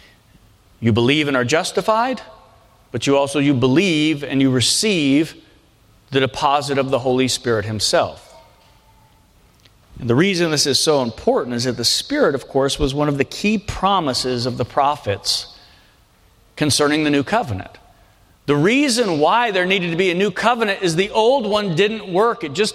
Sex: male